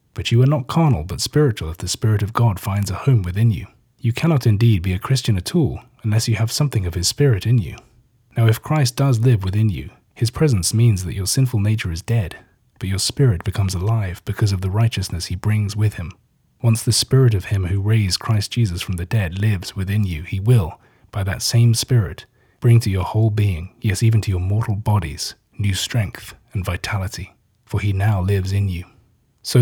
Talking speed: 215 wpm